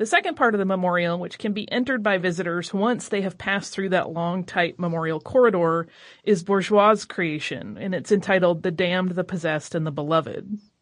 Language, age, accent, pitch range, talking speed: English, 30-49, American, 165-205 Hz, 195 wpm